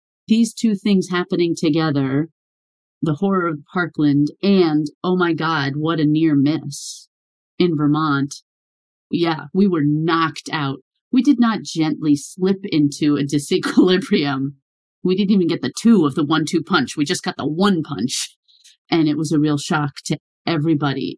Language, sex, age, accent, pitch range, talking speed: English, female, 30-49, American, 145-180 Hz, 160 wpm